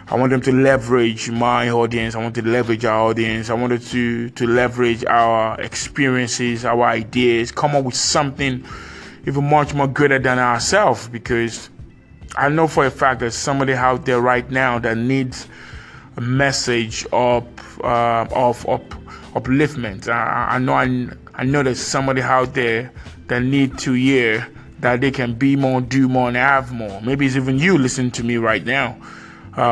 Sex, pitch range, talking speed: male, 115-130 Hz, 175 wpm